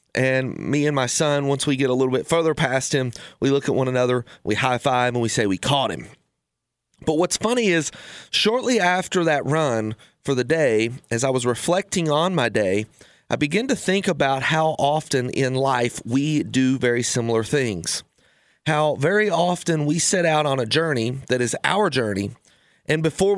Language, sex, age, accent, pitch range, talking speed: English, male, 30-49, American, 130-170 Hz, 190 wpm